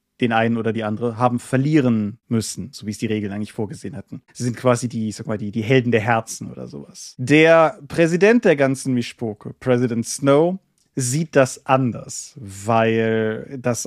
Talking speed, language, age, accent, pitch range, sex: 180 wpm, German, 30-49, German, 115-145 Hz, male